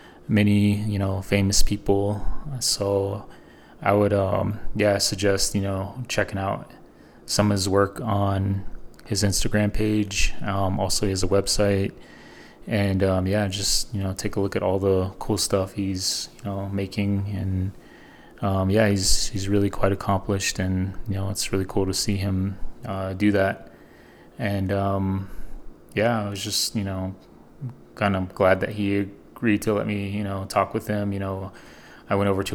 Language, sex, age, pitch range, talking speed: English, male, 20-39, 95-105 Hz, 175 wpm